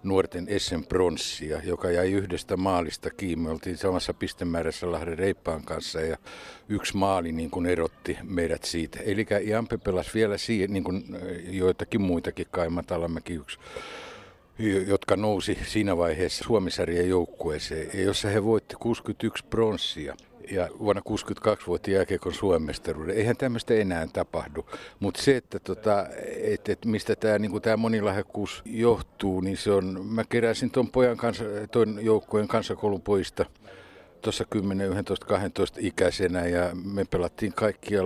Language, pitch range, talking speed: Finnish, 90-105 Hz, 130 wpm